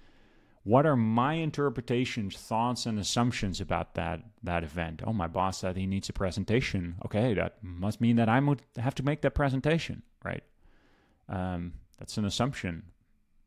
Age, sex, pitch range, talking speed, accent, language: 30-49, male, 90-120 Hz, 160 wpm, American, English